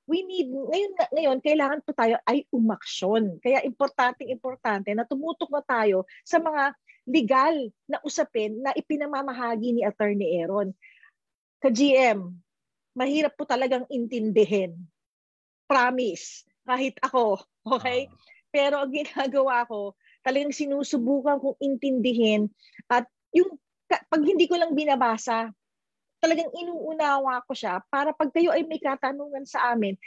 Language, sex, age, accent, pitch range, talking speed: English, female, 40-59, Filipino, 230-310 Hz, 120 wpm